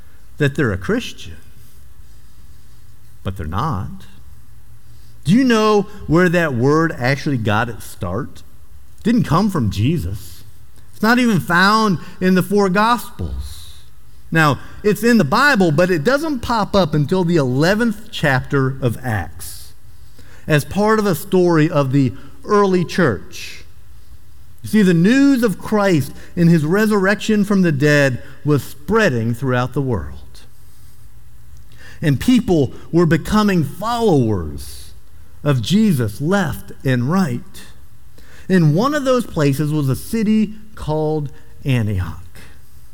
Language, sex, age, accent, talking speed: English, male, 50-69, American, 130 wpm